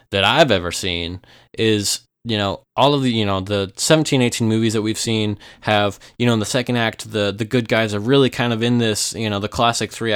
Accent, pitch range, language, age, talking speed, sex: American, 100-120 Hz, English, 20-39, 240 wpm, male